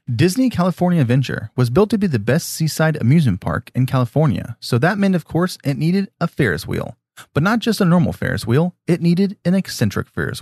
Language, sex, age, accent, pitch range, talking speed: English, male, 30-49, American, 125-170 Hz, 205 wpm